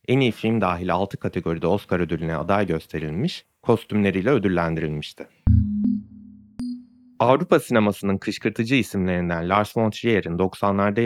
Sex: male